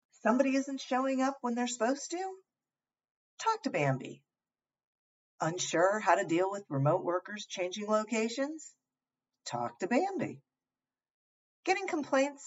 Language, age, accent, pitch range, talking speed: English, 50-69, American, 165-270 Hz, 120 wpm